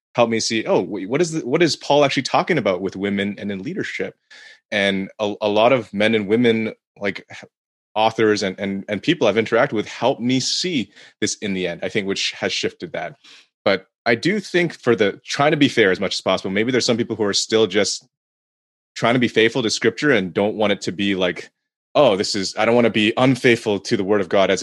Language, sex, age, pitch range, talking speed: English, male, 30-49, 100-120 Hz, 240 wpm